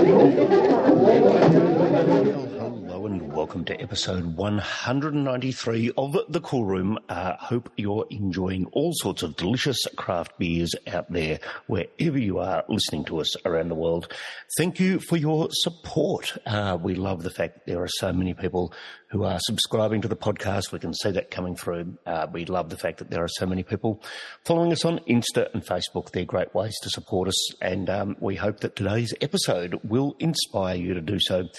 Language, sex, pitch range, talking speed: English, male, 90-115 Hz, 185 wpm